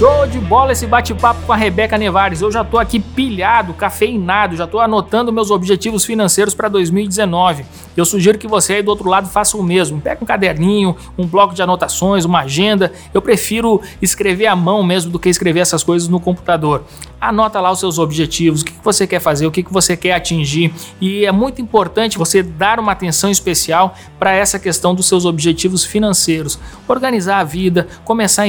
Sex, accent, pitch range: male, Brazilian, 180-220 Hz